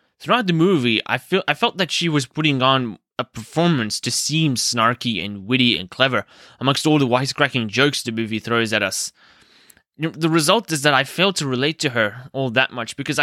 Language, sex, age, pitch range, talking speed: English, male, 20-39, 125-170 Hz, 205 wpm